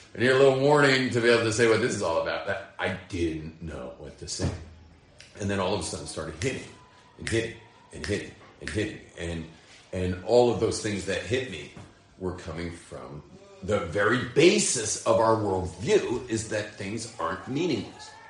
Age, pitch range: 40-59, 85-115 Hz